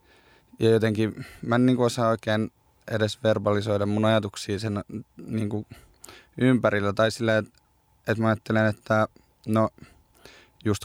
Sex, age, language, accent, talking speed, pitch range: male, 20-39, Finnish, native, 135 wpm, 95-110 Hz